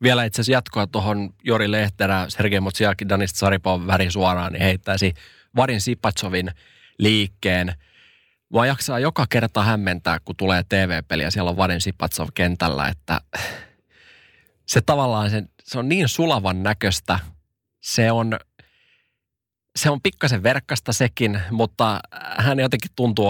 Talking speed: 125 wpm